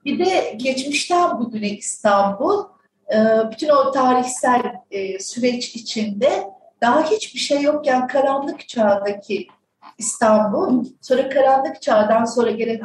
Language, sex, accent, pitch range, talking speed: Turkish, female, native, 210-295 Hz, 105 wpm